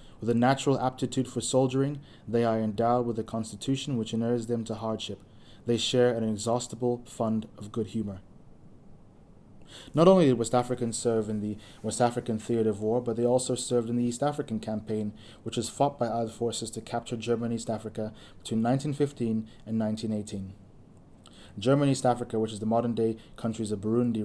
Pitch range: 110-120 Hz